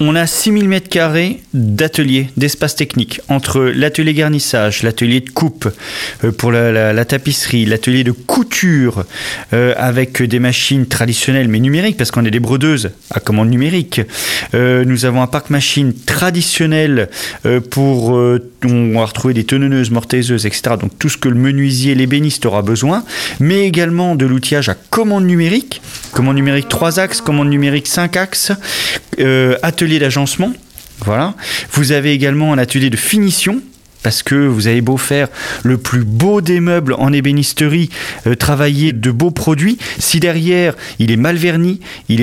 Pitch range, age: 125-165 Hz, 40-59